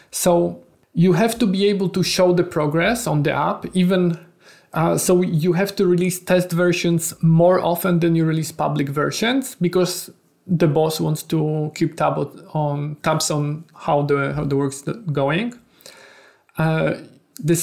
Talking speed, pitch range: 150 wpm, 155-180 Hz